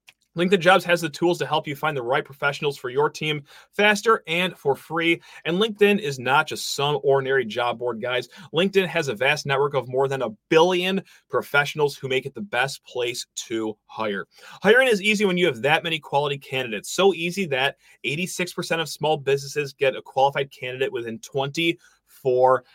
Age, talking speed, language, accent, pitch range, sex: 30-49, 190 wpm, English, American, 135-180 Hz, male